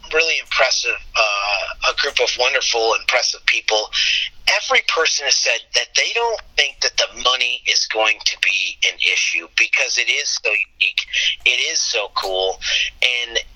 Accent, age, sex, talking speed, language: American, 30-49, male, 160 wpm, English